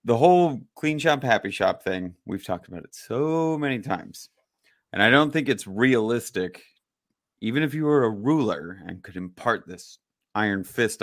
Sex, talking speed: male, 175 wpm